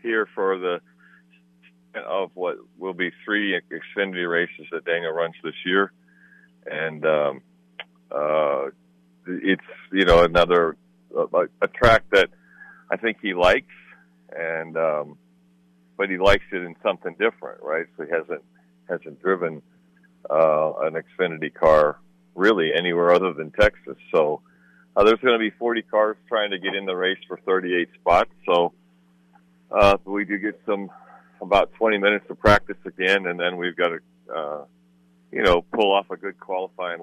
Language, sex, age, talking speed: English, male, 50-69, 155 wpm